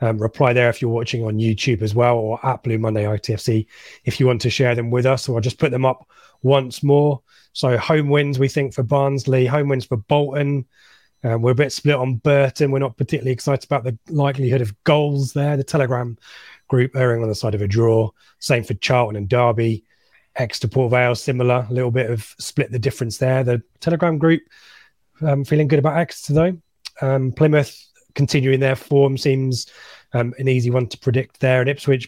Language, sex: English, male